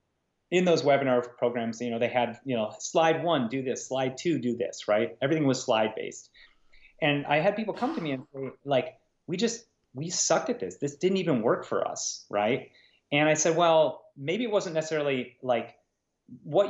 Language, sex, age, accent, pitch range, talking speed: English, male, 30-49, American, 120-170 Hz, 200 wpm